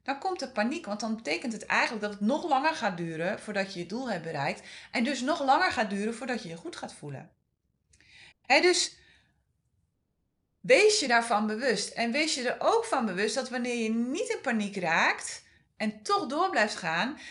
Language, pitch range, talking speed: Dutch, 190-275 Hz, 200 wpm